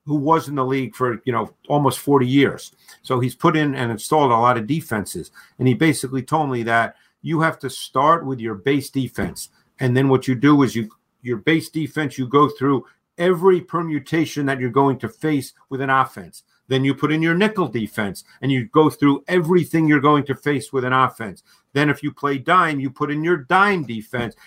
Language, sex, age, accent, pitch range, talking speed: English, male, 50-69, American, 130-155 Hz, 215 wpm